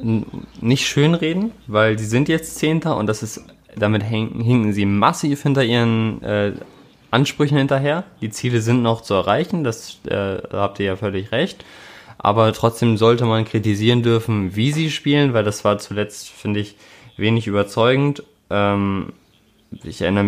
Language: German